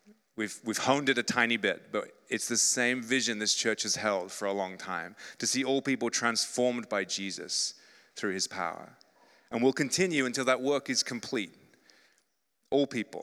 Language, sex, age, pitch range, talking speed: English, male, 30-49, 120-140 Hz, 180 wpm